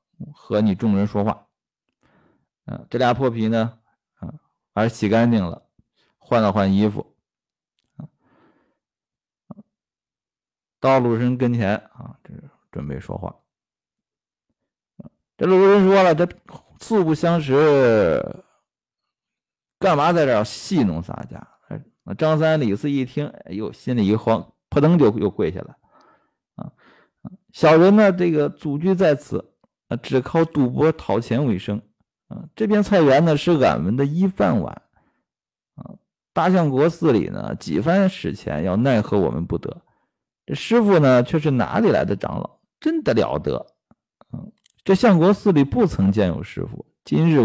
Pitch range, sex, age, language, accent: 115-170 Hz, male, 50-69, Chinese, native